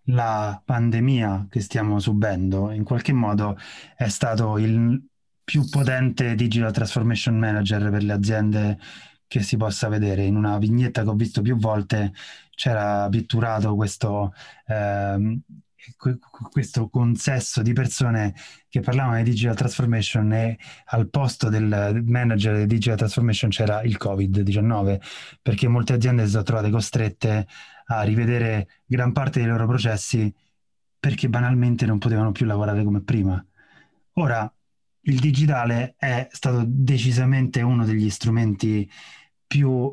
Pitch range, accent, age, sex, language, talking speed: 105-130 Hz, native, 20-39, male, Italian, 130 wpm